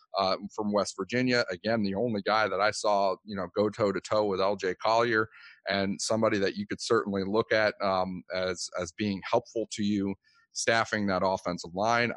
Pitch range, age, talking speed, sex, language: 100-125 Hz, 40-59, 190 wpm, male, English